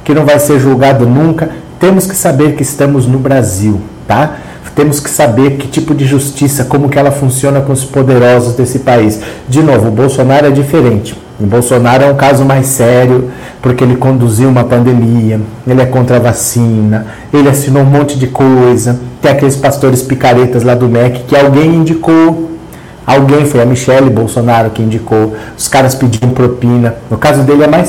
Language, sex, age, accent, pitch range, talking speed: Portuguese, male, 40-59, Brazilian, 125-160 Hz, 185 wpm